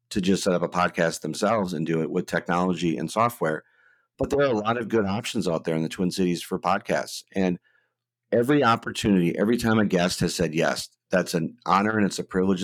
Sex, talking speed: male, 225 wpm